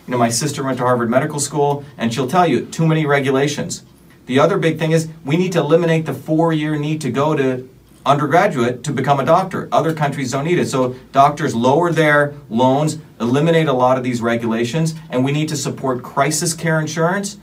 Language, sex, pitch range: English, male, 125-160 Hz